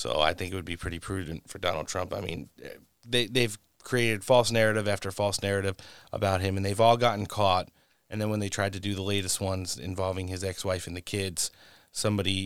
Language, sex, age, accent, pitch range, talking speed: English, male, 30-49, American, 90-105 Hz, 215 wpm